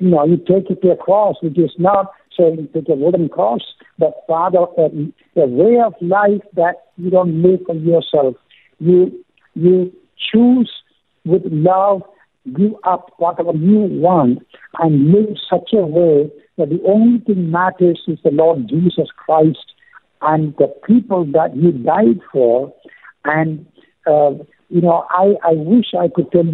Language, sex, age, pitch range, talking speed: English, male, 60-79, 155-185 Hz, 165 wpm